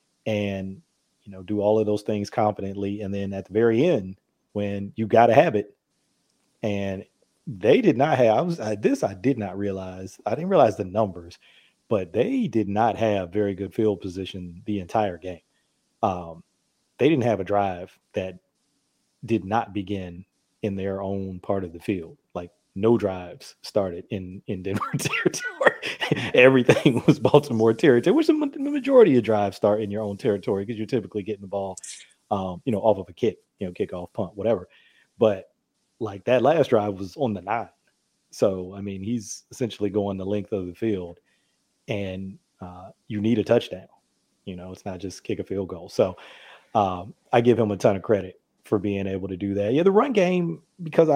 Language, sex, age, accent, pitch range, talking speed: English, male, 30-49, American, 95-115 Hz, 190 wpm